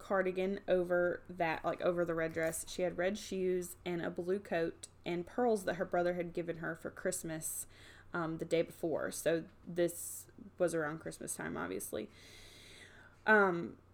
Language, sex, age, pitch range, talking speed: English, female, 20-39, 165-195 Hz, 165 wpm